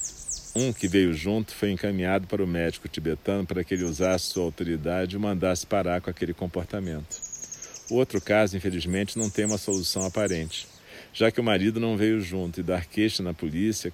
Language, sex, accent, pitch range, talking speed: Portuguese, male, Brazilian, 85-110 Hz, 185 wpm